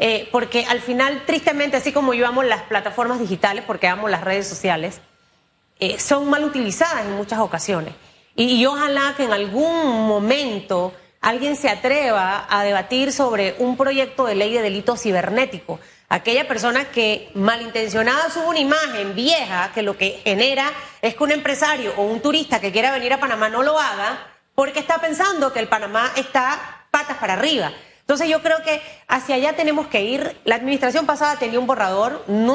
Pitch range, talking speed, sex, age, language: 210-280 Hz, 180 wpm, female, 30-49, Spanish